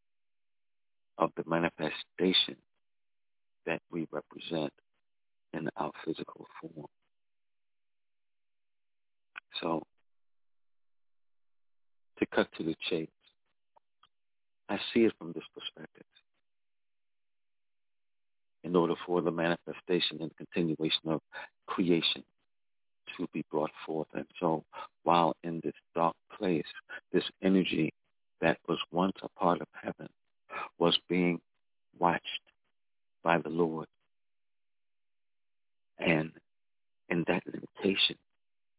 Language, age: English, 60-79